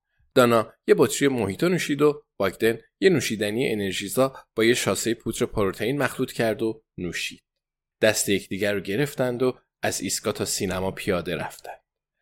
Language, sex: Persian, male